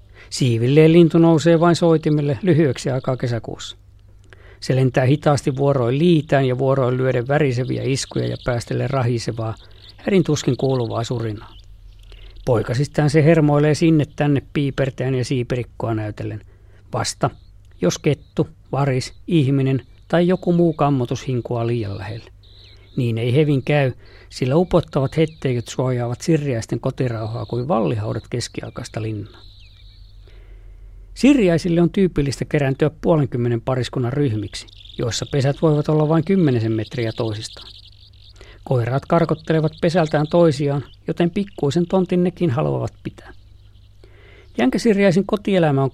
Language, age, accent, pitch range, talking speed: Finnish, 50-69, native, 105-150 Hz, 115 wpm